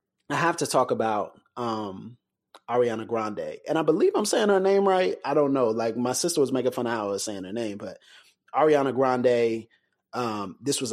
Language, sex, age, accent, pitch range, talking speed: English, male, 30-49, American, 115-140 Hz, 210 wpm